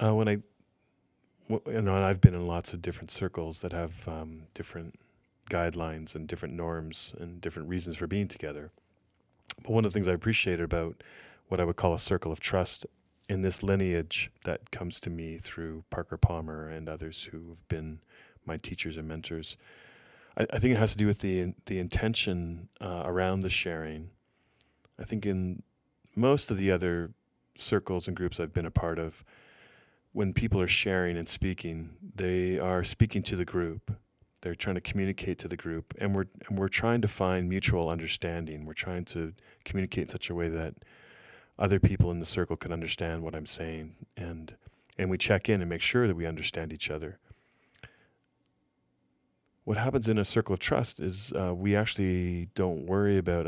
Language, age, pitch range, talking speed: English, 30-49, 85-100 Hz, 185 wpm